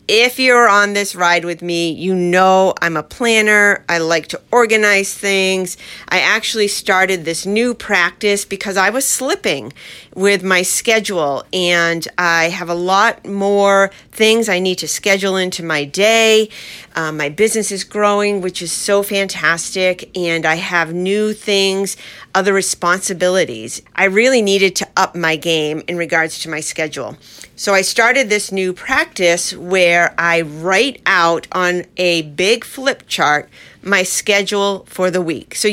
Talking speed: 155 wpm